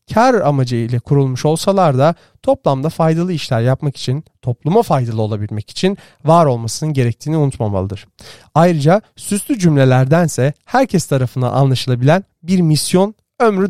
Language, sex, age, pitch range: Turkish, male, 40-59, 125-170 Hz